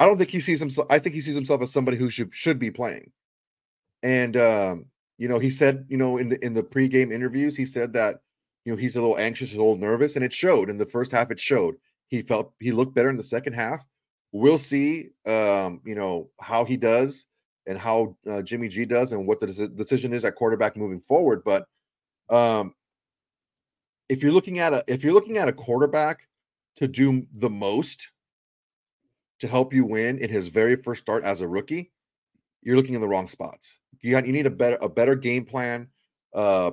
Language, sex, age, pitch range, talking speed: English, male, 30-49, 105-130 Hz, 215 wpm